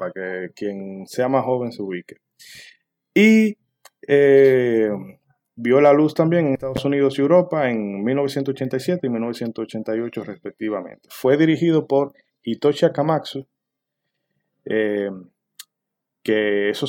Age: 20-39